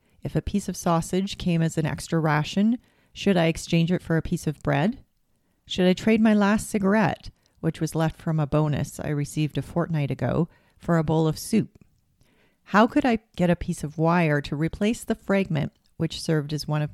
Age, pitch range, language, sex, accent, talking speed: 40-59, 150-185 Hz, English, female, American, 205 wpm